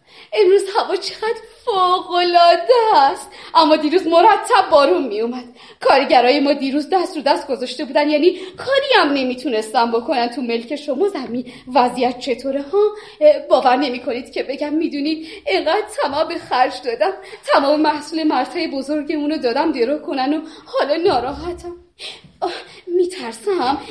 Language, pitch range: Persian, 275-405 Hz